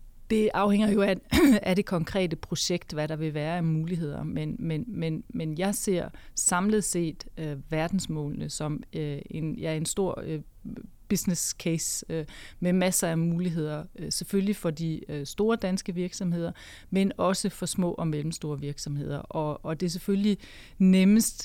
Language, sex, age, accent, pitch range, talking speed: Danish, female, 30-49, native, 155-185 Hz, 145 wpm